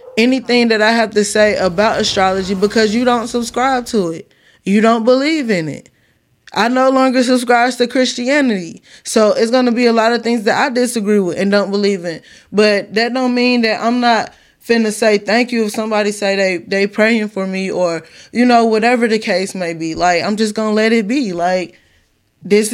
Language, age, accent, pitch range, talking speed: English, 10-29, American, 195-235 Hz, 205 wpm